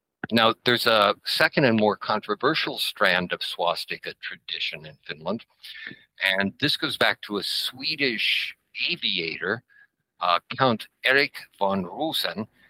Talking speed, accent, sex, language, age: 125 wpm, American, male, Finnish, 60-79